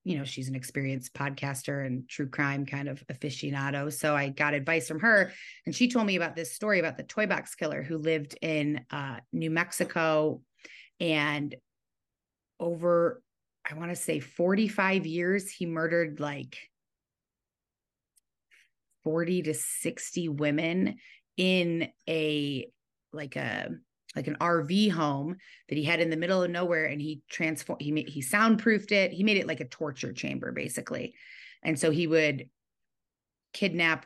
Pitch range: 140-170 Hz